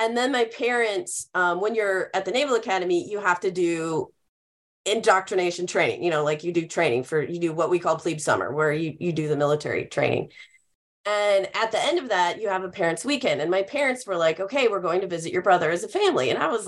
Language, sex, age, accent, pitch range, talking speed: English, female, 30-49, American, 165-220 Hz, 240 wpm